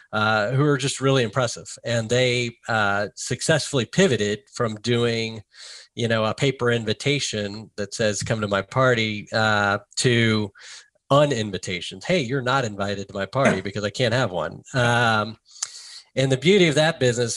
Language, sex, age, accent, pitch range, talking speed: English, male, 40-59, American, 105-130 Hz, 160 wpm